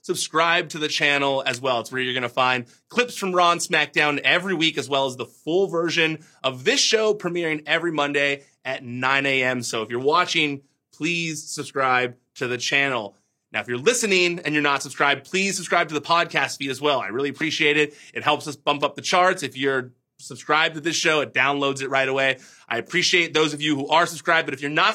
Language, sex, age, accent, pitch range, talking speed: English, male, 30-49, American, 135-175 Hz, 220 wpm